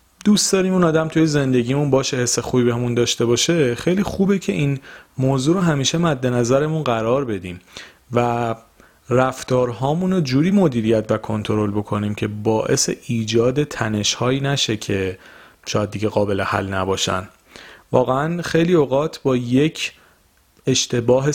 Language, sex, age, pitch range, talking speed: Persian, male, 30-49, 105-135 Hz, 135 wpm